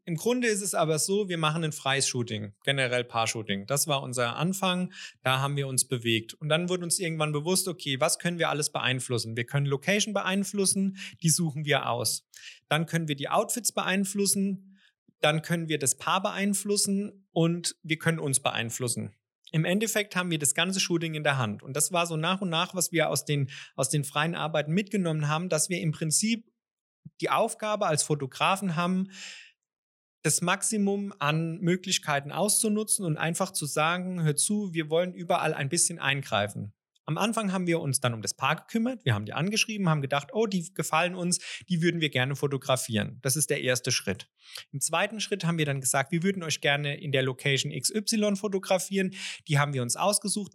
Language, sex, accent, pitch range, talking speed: German, male, German, 140-190 Hz, 190 wpm